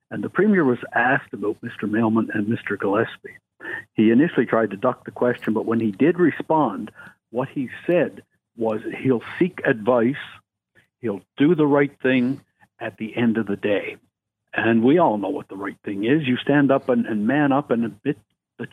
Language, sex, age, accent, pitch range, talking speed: English, male, 60-79, American, 115-145 Hz, 190 wpm